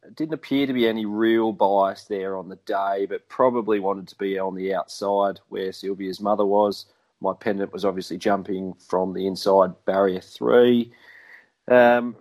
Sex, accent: male, Australian